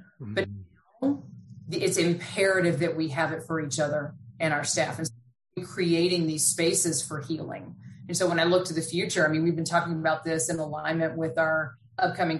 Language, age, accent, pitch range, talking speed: English, 30-49, American, 160-190 Hz, 200 wpm